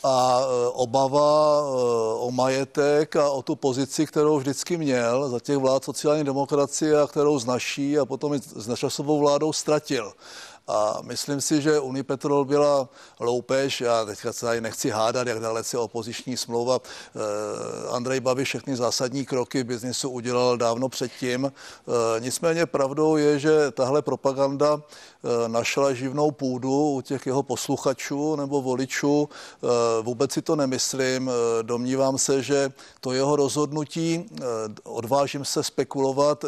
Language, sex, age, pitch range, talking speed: Czech, male, 60-79, 130-150 Hz, 135 wpm